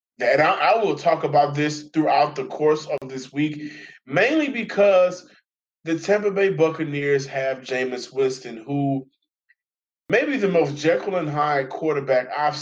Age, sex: 20-39, male